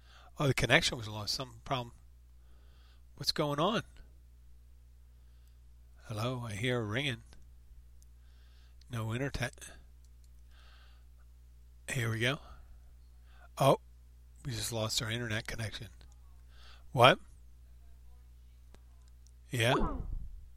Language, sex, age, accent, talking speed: English, male, 50-69, American, 85 wpm